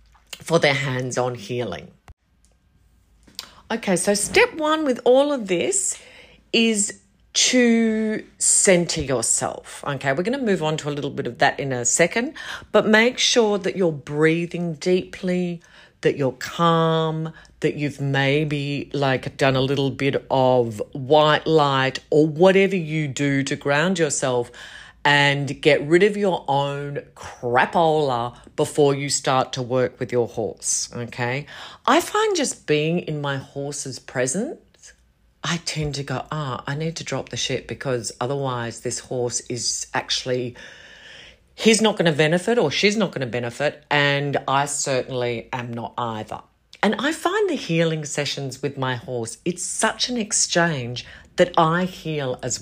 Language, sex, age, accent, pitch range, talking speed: English, female, 40-59, Australian, 125-180 Hz, 155 wpm